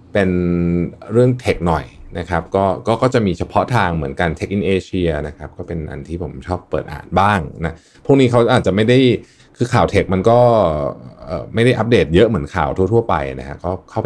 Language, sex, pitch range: Thai, male, 75-100 Hz